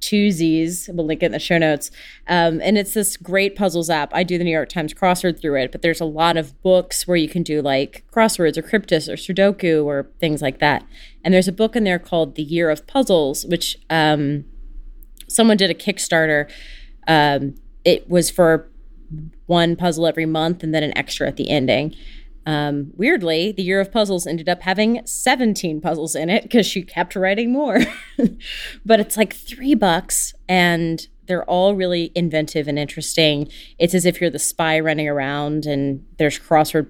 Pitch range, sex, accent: 155-195 Hz, female, American